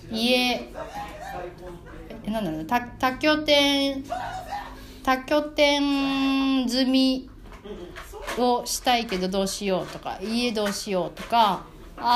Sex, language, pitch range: female, Japanese, 185-245 Hz